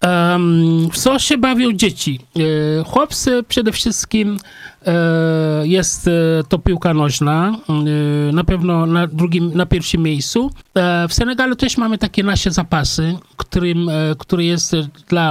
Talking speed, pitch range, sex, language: 110 wpm, 155-195 Hz, male, Polish